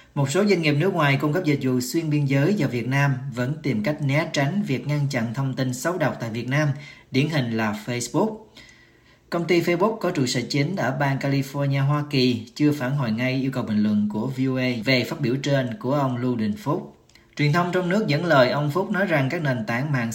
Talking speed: 240 wpm